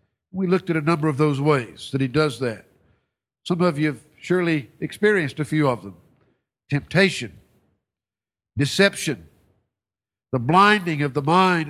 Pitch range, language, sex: 150-215 Hz, English, male